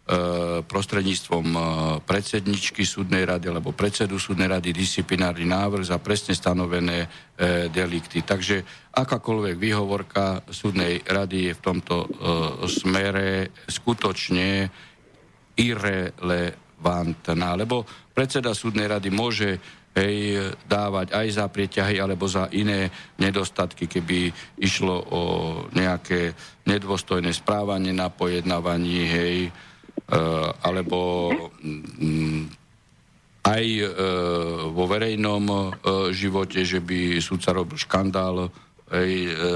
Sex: male